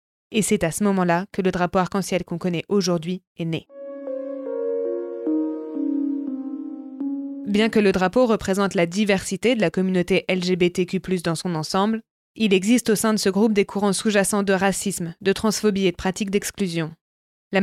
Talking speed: 160 wpm